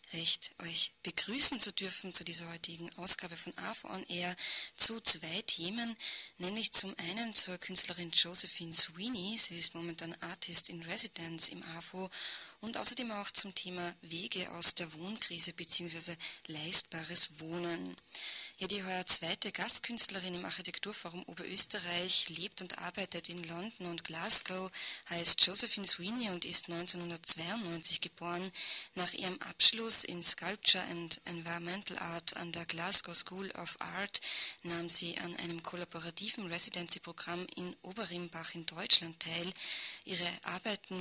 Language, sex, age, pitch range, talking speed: German, female, 20-39, 170-190 Hz, 135 wpm